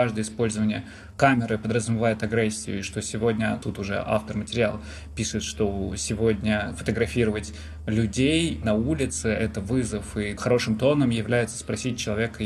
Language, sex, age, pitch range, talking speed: Russian, male, 20-39, 110-125 Hz, 130 wpm